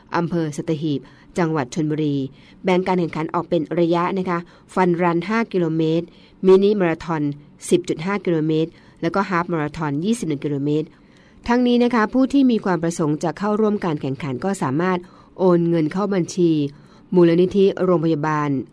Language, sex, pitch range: Thai, female, 155-190 Hz